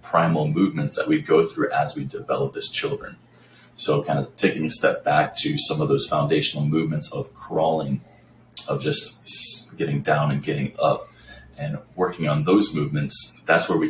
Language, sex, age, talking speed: English, male, 30-49, 175 wpm